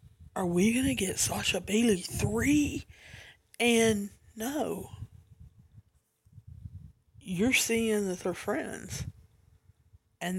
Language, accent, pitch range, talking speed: English, American, 110-185 Hz, 90 wpm